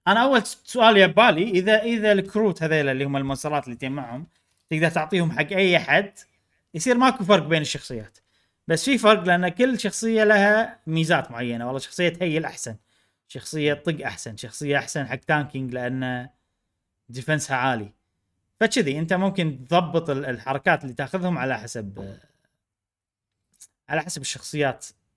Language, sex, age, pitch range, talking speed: Arabic, male, 30-49, 130-195 Hz, 145 wpm